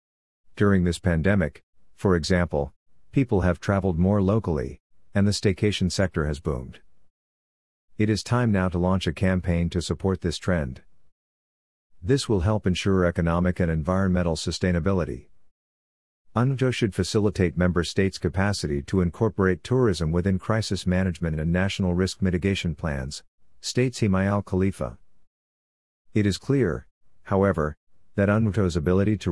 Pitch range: 85-100 Hz